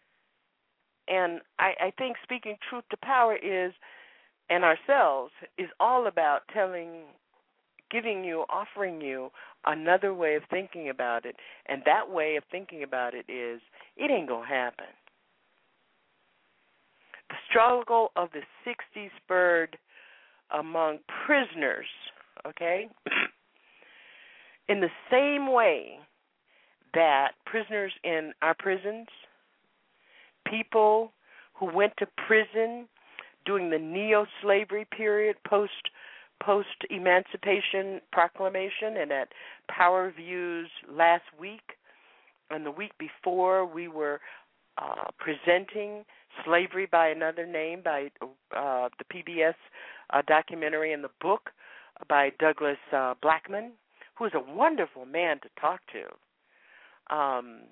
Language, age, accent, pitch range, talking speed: English, 50-69, American, 155-210 Hz, 115 wpm